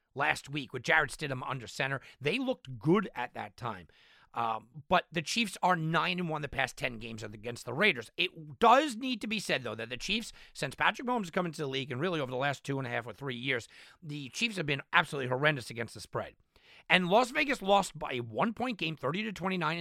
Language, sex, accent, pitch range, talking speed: English, male, American, 135-195 Hz, 225 wpm